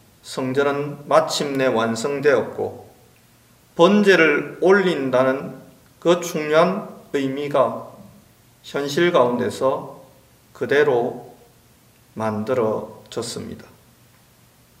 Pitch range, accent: 125-185 Hz, native